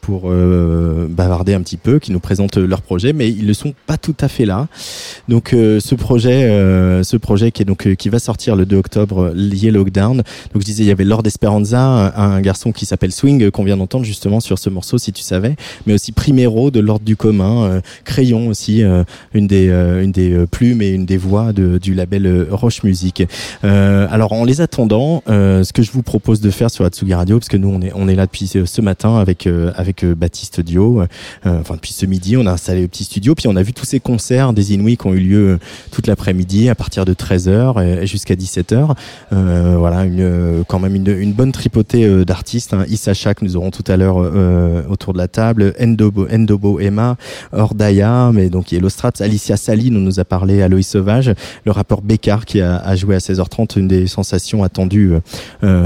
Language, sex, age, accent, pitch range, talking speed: French, male, 20-39, French, 95-110 Hz, 230 wpm